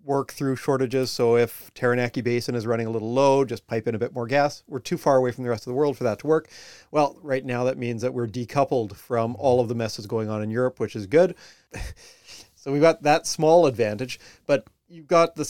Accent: American